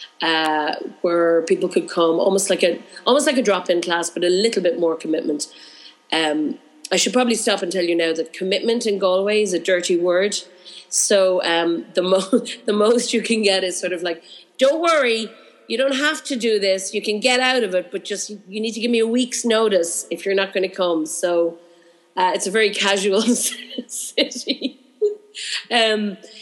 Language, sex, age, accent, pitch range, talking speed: English, female, 30-49, Irish, 170-215 Hz, 200 wpm